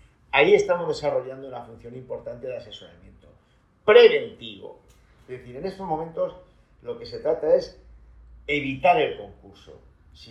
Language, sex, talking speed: Spanish, male, 135 wpm